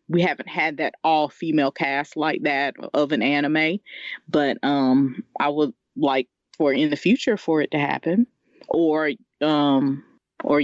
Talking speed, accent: 160 wpm, American